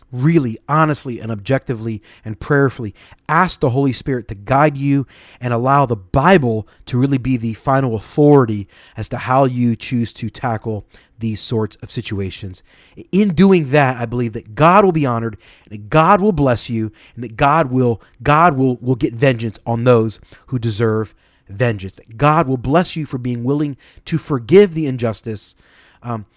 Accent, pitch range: American, 110-145 Hz